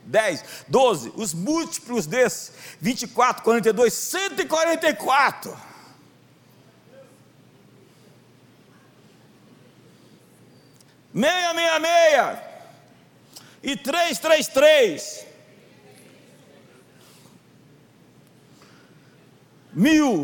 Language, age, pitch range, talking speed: Portuguese, 60-79, 205-300 Hz, 70 wpm